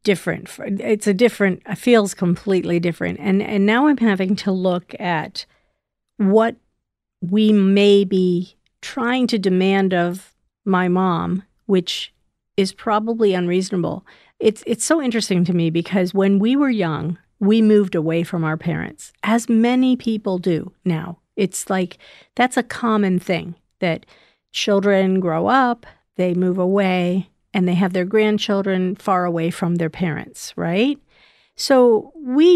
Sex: female